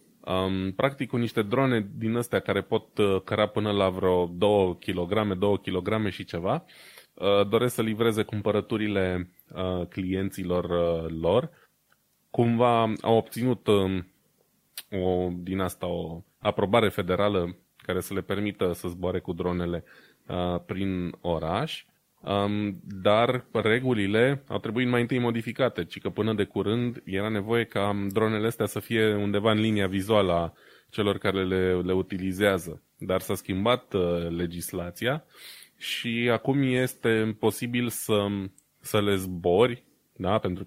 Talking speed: 125 wpm